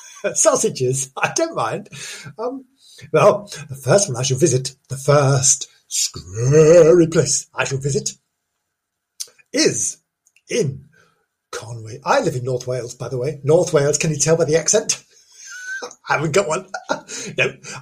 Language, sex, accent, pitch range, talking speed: English, male, British, 130-160 Hz, 145 wpm